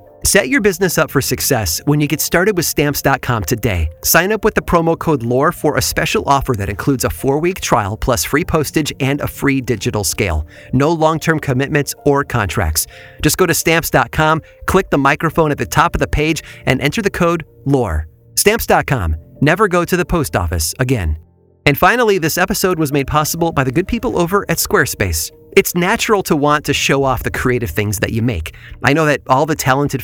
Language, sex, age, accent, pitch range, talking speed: English, male, 30-49, American, 120-165 Hz, 200 wpm